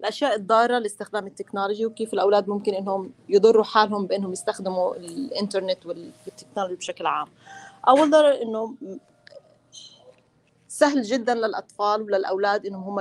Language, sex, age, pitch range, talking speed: English, female, 30-49, 190-225 Hz, 110 wpm